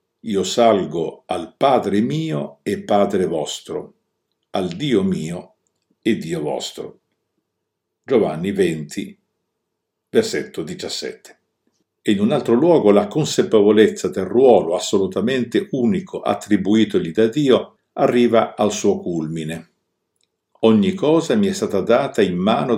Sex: male